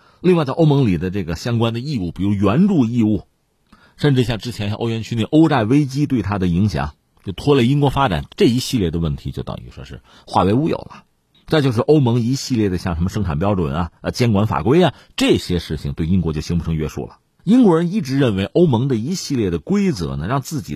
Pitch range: 95-150 Hz